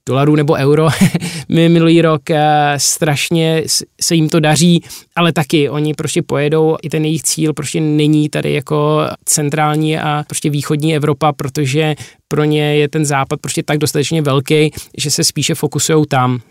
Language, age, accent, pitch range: Czech, 20-39, native, 140-155 Hz